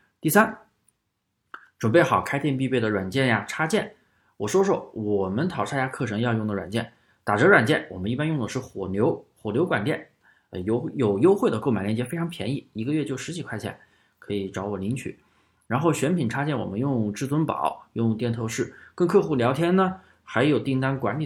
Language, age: Chinese, 20-39